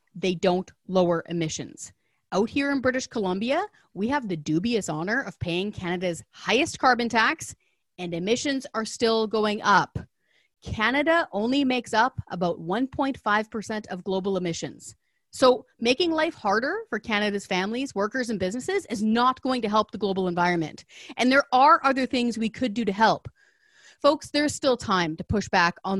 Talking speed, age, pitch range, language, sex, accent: 165 wpm, 30-49, 185-255 Hz, English, female, American